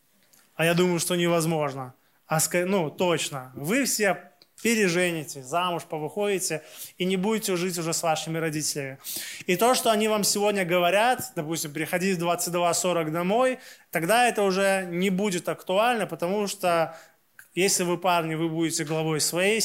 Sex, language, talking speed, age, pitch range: male, Russian, 145 wpm, 20-39, 165-205 Hz